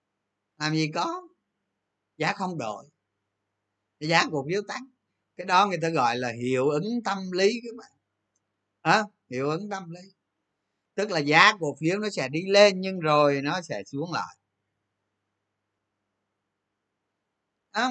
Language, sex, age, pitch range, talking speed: Vietnamese, male, 20-39, 125-195 Hz, 145 wpm